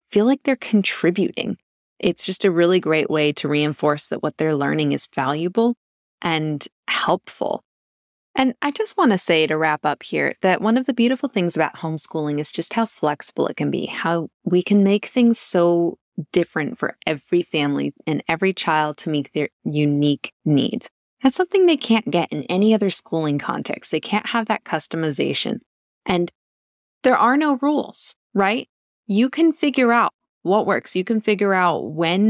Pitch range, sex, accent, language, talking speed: 165-225 Hz, female, American, English, 175 wpm